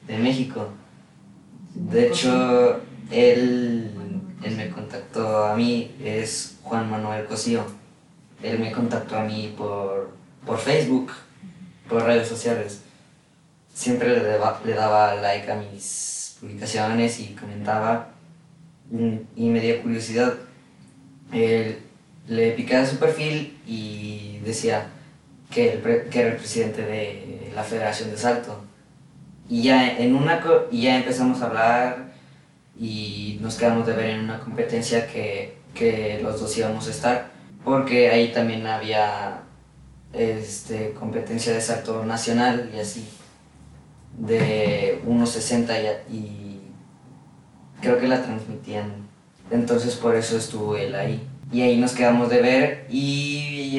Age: 20-39